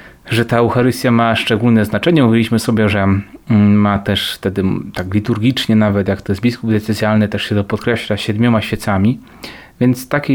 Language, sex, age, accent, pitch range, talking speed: Polish, male, 30-49, native, 110-130 Hz, 160 wpm